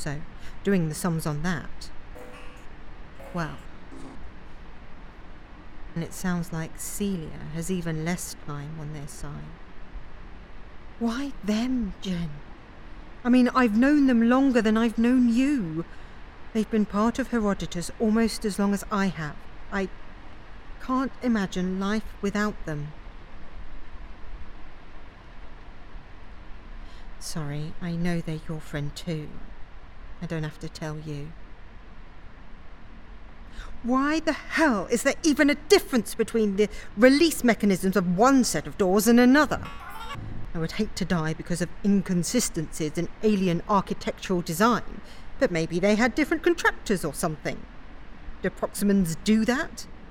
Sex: female